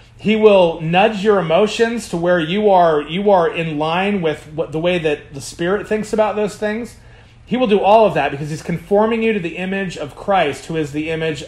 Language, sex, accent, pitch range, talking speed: English, male, American, 150-205 Hz, 225 wpm